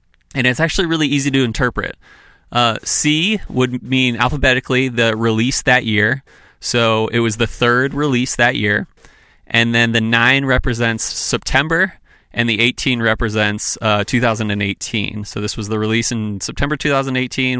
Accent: American